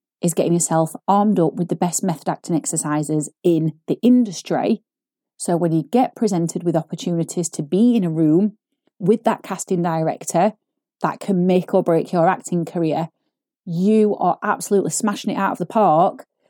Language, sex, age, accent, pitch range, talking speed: English, female, 30-49, British, 170-225 Hz, 170 wpm